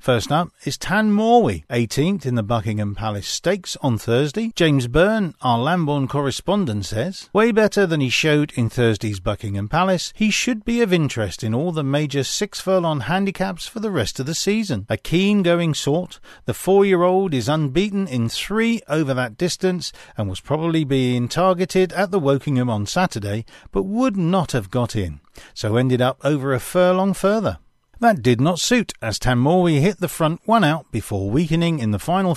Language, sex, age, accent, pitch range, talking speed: English, male, 40-59, British, 120-185 Hz, 180 wpm